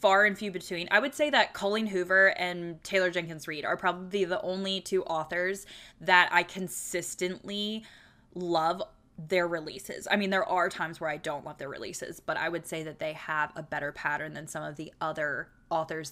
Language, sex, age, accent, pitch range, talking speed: English, female, 10-29, American, 165-205 Hz, 195 wpm